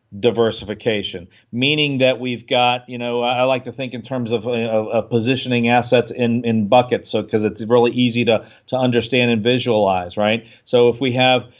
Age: 40-59